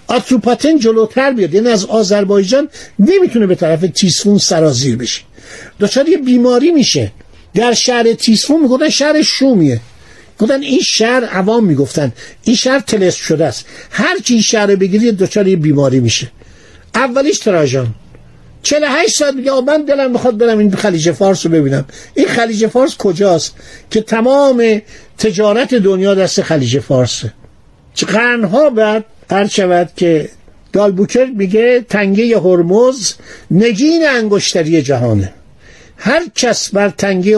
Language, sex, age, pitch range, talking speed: Persian, male, 50-69, 155-235 Hz, 135 wpm